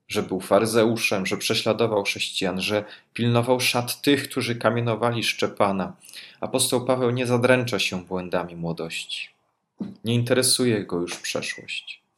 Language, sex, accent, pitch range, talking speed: Polish, male, native, 95-120 Hz, 125 wpm